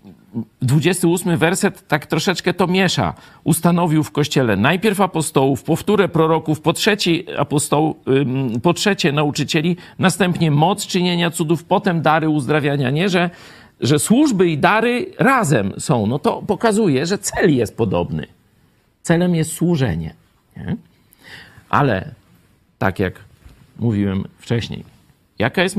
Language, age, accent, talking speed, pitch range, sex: Polish, 50-69, native, 120 wpm, 110-175 Hz, male